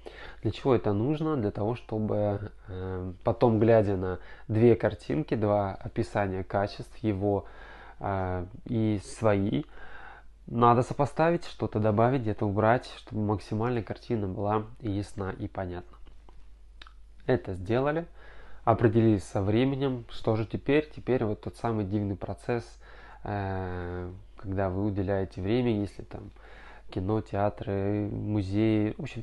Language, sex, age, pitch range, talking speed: Russian, male, 20-39, 100-115 Hz, 120 wpm